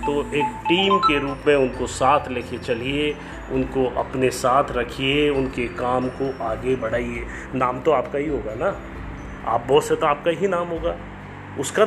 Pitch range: 115-165 Hz